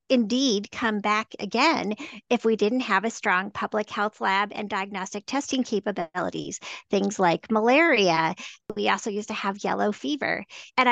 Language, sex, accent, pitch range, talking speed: English, female, American, 205-250 Hz, 155 wpm